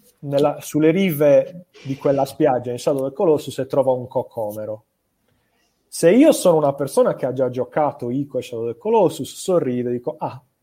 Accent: native